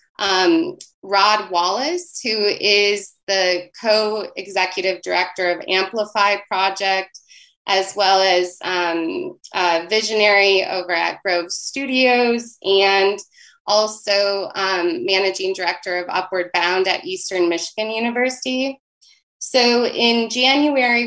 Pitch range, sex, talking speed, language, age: 190-230 Hz, female, 105 wpm, English, 20-39